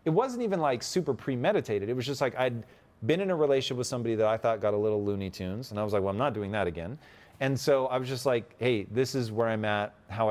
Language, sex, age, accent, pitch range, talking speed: English, male, 30-49, American, 105-145 Hz, 280 wpm